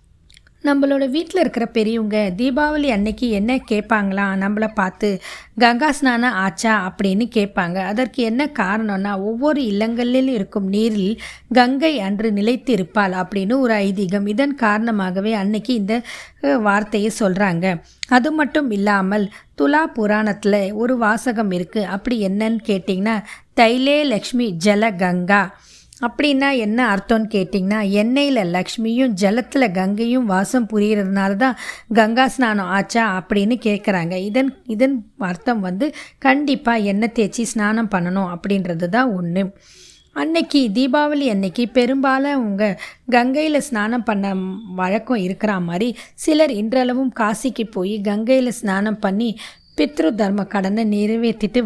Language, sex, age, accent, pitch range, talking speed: Tamil, female, 20-39, native, 200-250 Hz, 115 wpm